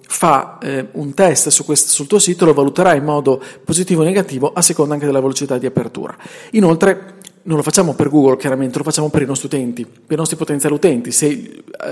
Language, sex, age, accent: Italian, male, 40-59, native